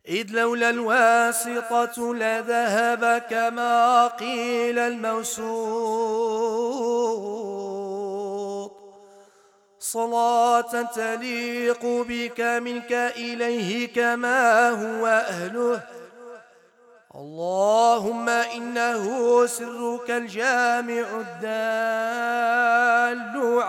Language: Turkish